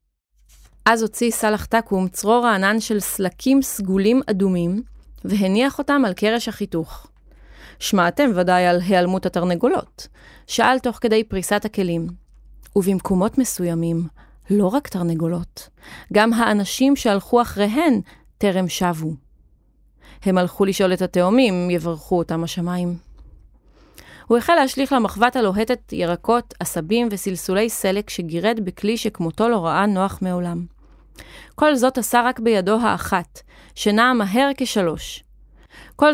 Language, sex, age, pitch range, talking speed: Hebrew, female, 30-49, 185-235 Hz, 115 wpm